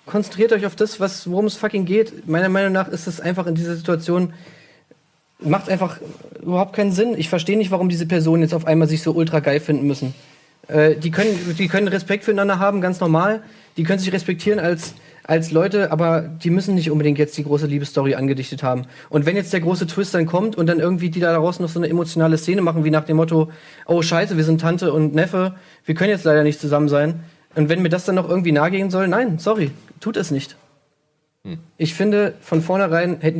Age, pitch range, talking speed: 30-49, 155-185 Hz, 220 wpm